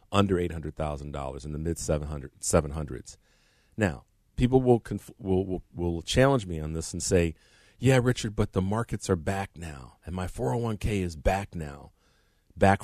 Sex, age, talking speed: male, 40-59, 155 wpm